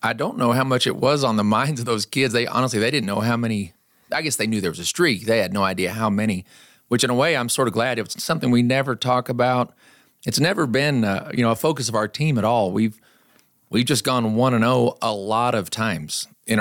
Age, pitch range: 40-59, 110-135 Hz